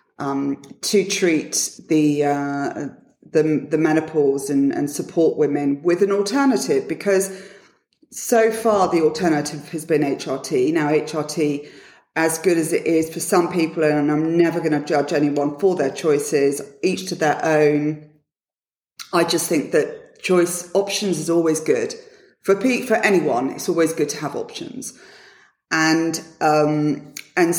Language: English